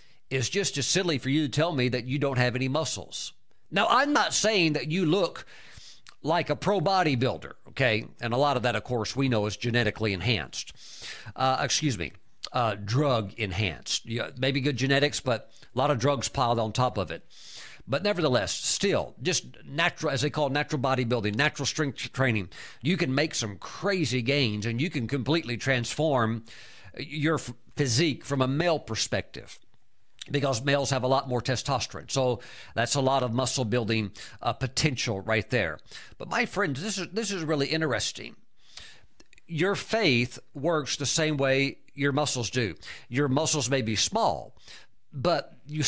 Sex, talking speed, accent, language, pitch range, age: male, 170 wpm, American, English, 120-155 Hz, 50-69